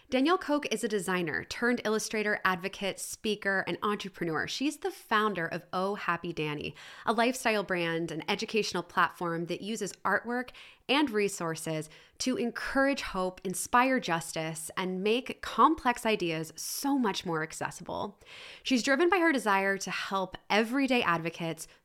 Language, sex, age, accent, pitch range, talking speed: English, female, 20-39, American, 180-240 Hz, 140 wpm